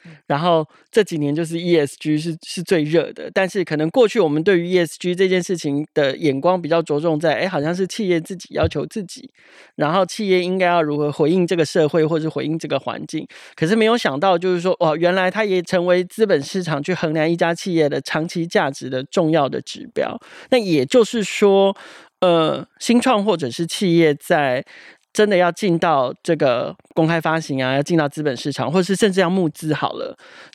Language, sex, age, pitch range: Chinese, male, 30-49, 150-185 Hz